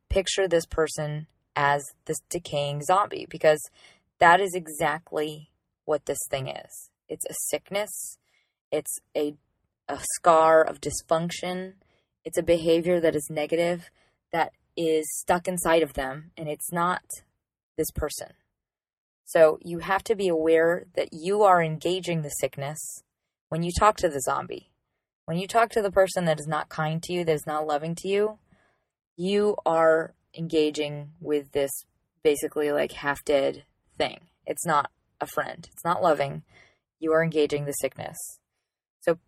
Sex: female